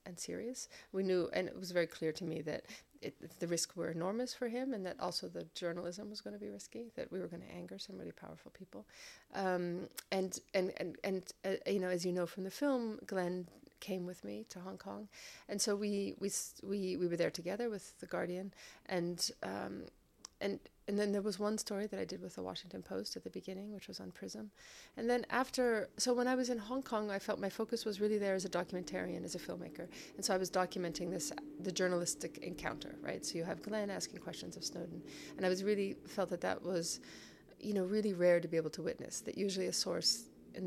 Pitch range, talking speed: 170-210 Hz, 235 wpm